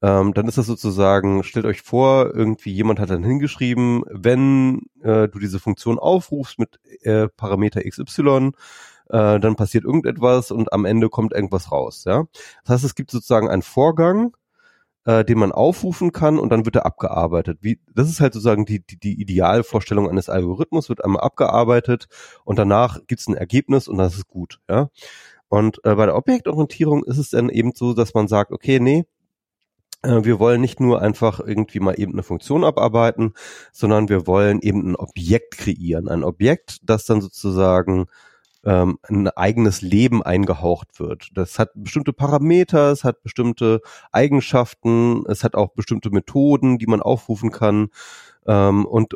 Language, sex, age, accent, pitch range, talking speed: German, male, 30-49, German, 100-125 Hz, 170 wpm